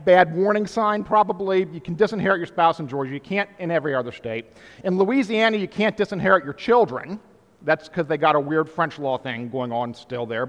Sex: male